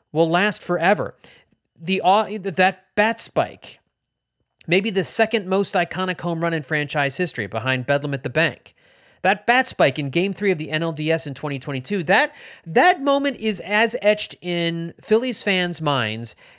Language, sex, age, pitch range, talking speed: English, male, 30-49, 125-185 Hz, 165 wpm